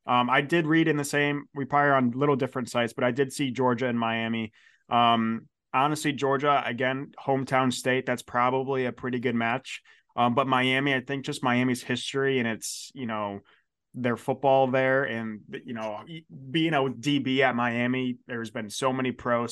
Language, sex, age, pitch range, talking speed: English, male, 20-39, 115-135 Hz, 185 wpm